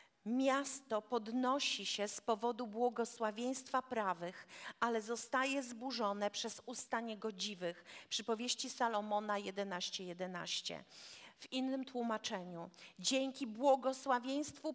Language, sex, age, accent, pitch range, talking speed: Polish, female, 40-59, native, 210-270 Hz, 90 wpm